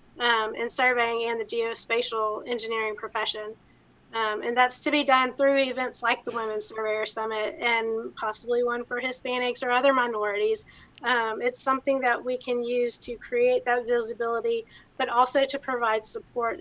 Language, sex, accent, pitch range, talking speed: English, female, American, 230-265 Hz, 165 wpm